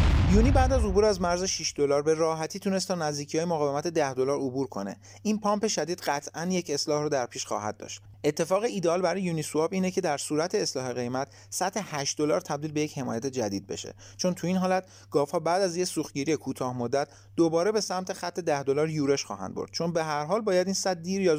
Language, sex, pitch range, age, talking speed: Persian, male, 135-185 Hz, 30-49, 215 wpm